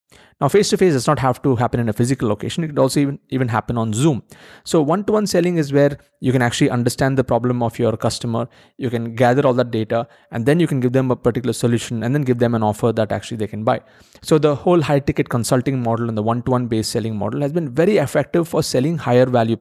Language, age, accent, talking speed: English, 30-49, Indian, 245 wpm